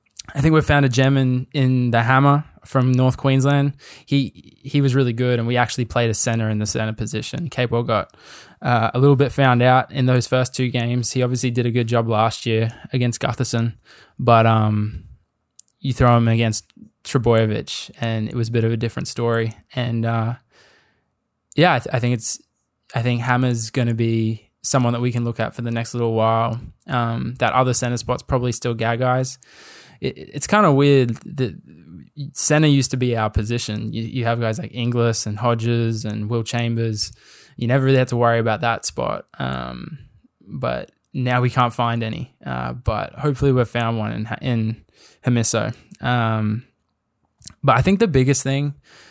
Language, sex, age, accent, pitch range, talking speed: English, male, 10-29, Australian, 115-130 Hz, 185 wpm